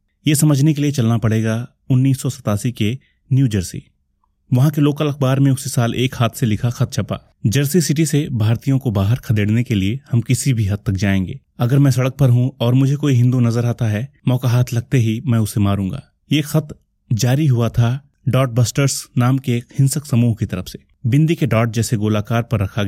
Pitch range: 110-135 Hz